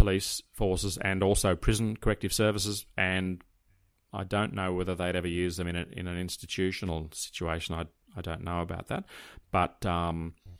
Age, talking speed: 30-49, 170 wpm